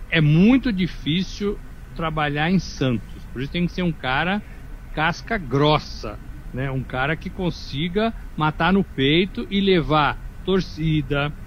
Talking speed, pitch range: 135 wpm, 135-165 Hz